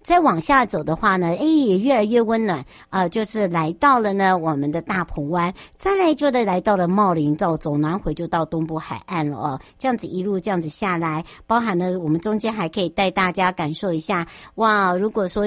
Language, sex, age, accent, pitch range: Chinese, male, 60-79, American, 165-225 Hz